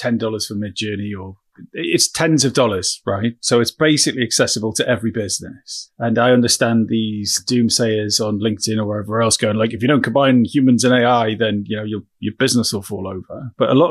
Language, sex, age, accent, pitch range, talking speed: English, male, 30-49, British, 110-135 Hz, 205 wpm